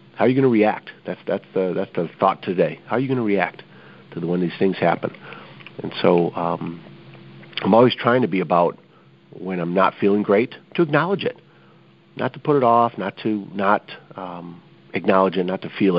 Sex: male